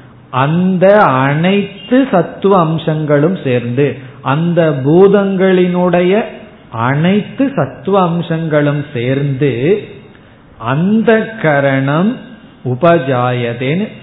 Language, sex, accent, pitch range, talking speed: Tamil, male, native, 130-175 Hz, 60 wpm